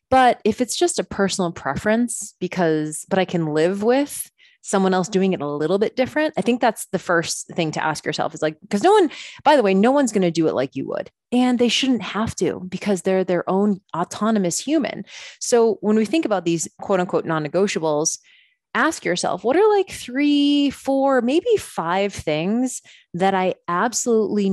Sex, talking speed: female, 195 wpm